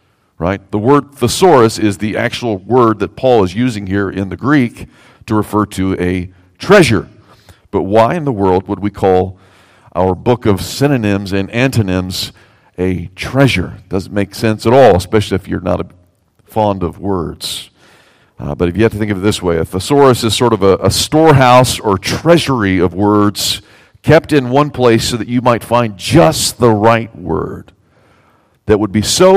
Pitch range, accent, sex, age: 95-120 Hz, American, male, 50-69